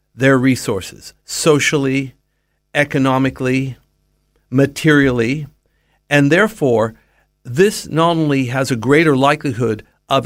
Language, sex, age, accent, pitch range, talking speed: English, male, 50-69, American, 130-165 Hz, 90 wpm